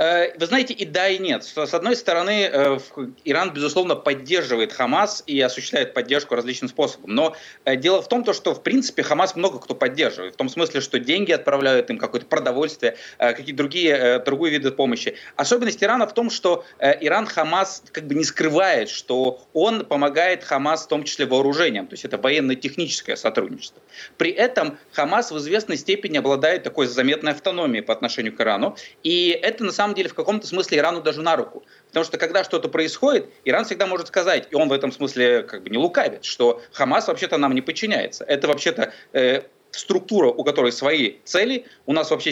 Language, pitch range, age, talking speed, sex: Russian, 140-210 Hz, 30-49, 180 wpm, male